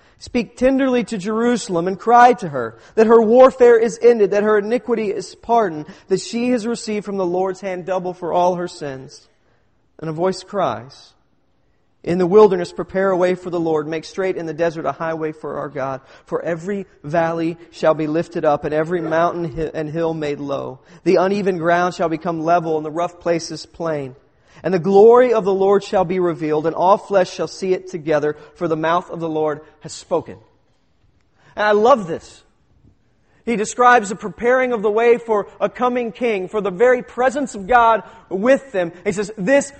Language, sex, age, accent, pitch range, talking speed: English, male, 40-59, American, 165-230 Hz, 195 wpm